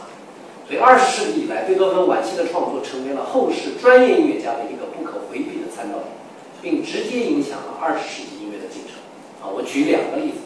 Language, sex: Chinese, male